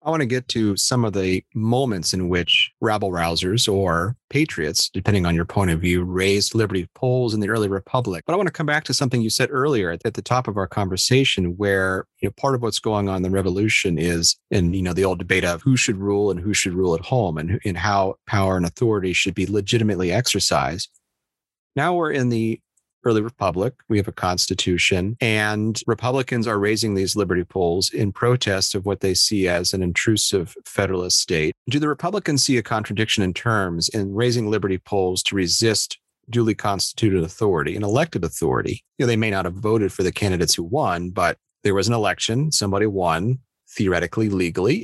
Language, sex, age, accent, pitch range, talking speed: English, male, 40-59, American, 95-115 Hz, 195 wpm